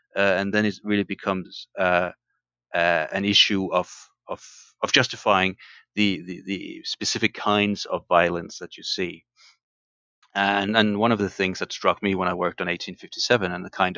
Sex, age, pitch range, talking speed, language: male, 30-49, 90-105 Hz, 175 wpm, English